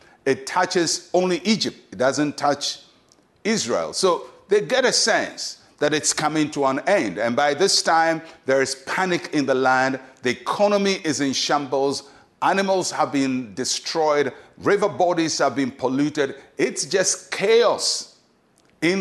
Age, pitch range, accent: 60-79, 135-180 Hz, Nigerian